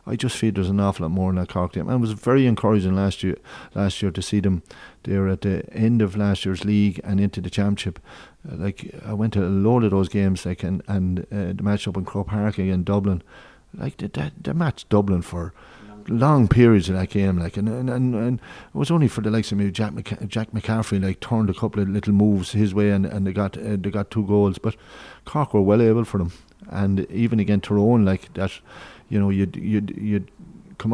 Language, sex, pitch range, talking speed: English, male, 100-115 Hz, 240 wpm